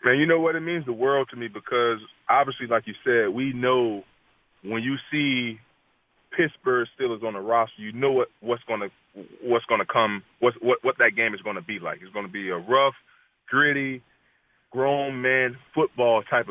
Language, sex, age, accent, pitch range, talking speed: English, male, 20-39, American, 115-135 Hz, 205 wpm